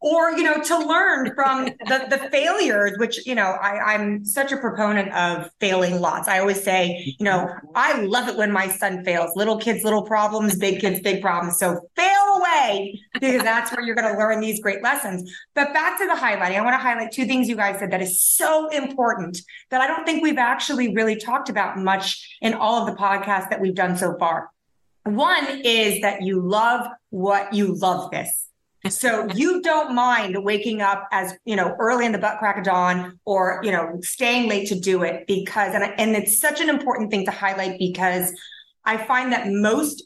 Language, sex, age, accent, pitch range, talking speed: English, female, 30-49, American, 195-255 Hz, 205 wpm